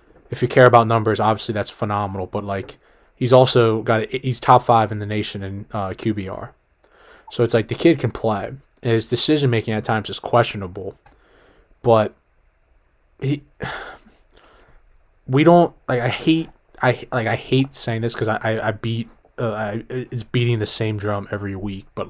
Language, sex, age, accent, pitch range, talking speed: English, male, 20-39, American, 105-125 Hz, 180 wpm